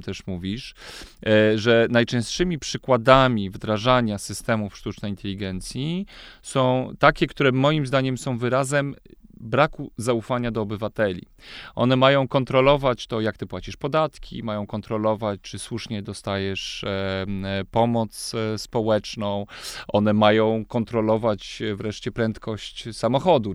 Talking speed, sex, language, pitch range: 105 wpm, male, English, 105-130 Hz